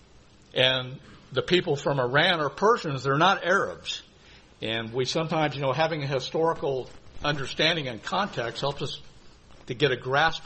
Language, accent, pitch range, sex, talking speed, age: English, American, 125-160 Hz, male, 155 wpm, 60-79